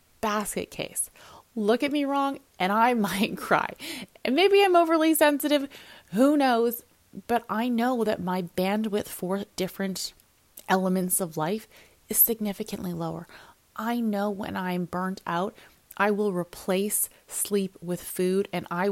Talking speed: 145 wpm